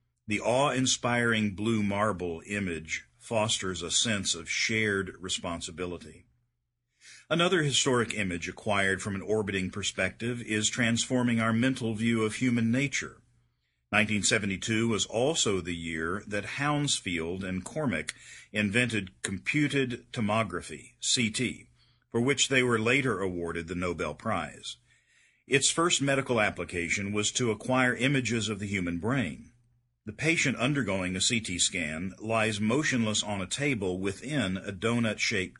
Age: 50-69